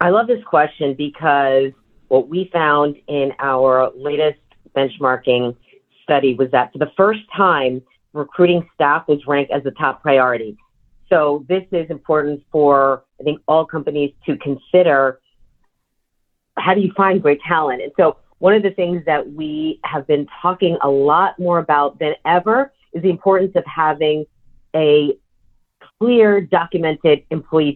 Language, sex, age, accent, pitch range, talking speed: English, female, 40-59, American, 140-180 Hz, 150 wpm